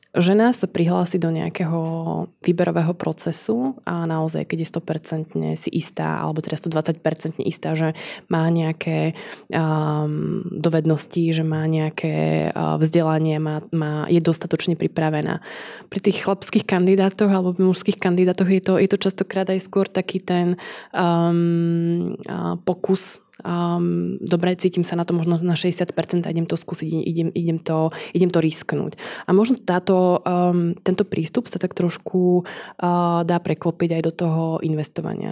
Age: 20-39